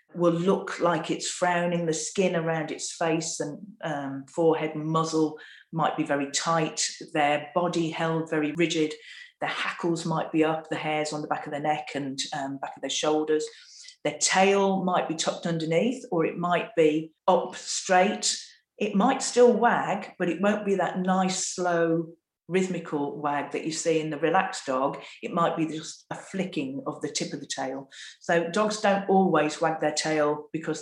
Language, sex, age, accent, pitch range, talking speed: English, female, 40-59, British, 145-175 Hz, 185 wpm